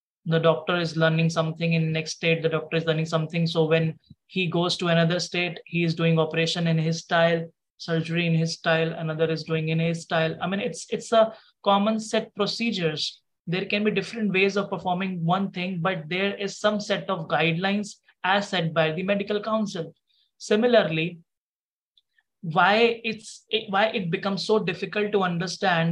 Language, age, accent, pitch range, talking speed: English, 20-39, Indian, 165-200 Hz, 180 wpm